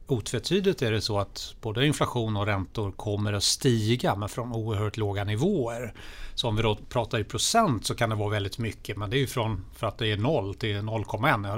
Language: Swedish